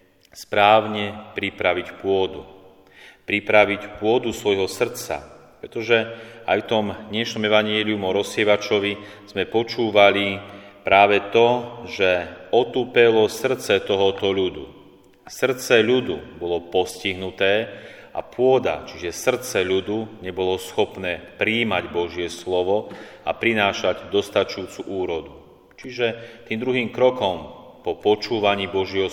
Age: 30-49